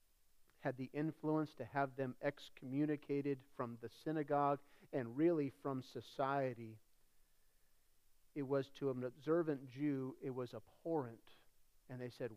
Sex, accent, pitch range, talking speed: male, American, 125-175 Hz, 125 wpm